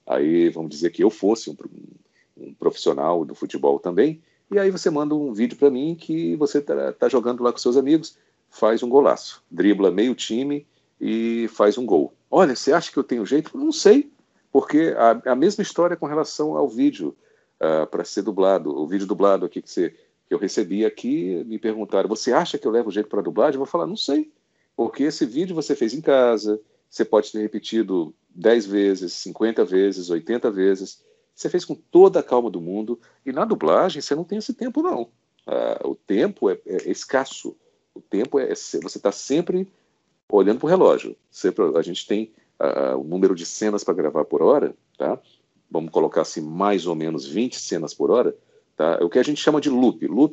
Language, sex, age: Portuguese, male, 50-69